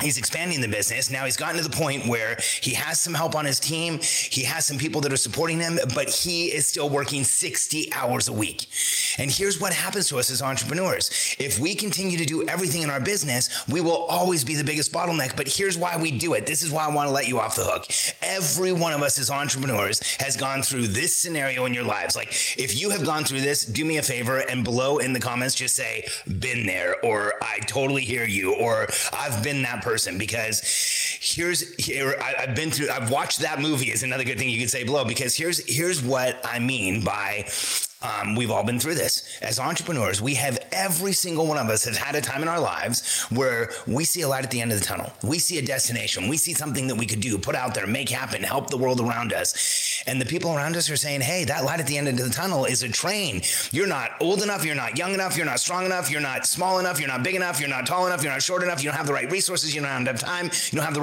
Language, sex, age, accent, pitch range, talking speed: English, male, 30-49, American, 130-170 Hz, 260 wpm